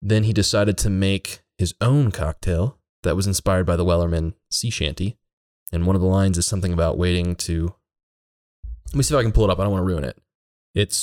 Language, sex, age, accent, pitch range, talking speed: English, male, 20-39, American, 85-100 Hz, 230 wpm